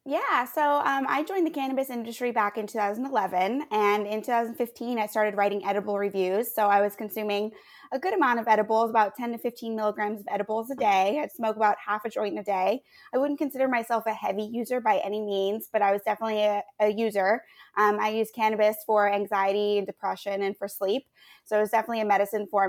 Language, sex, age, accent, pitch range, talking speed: English, female, 20-39, American, 205-235 Hz, 210 wpm